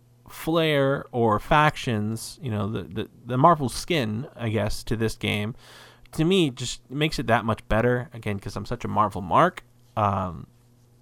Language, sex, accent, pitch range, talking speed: English, male, American, 105-125 Hz, 170 wpm